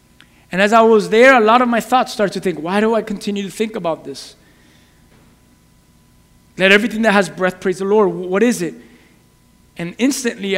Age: 30-49